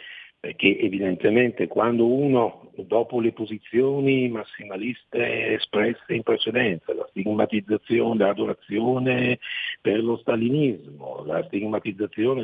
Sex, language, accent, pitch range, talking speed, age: male, Italian, native, 95-155 Hz, 90 wpm, 50-69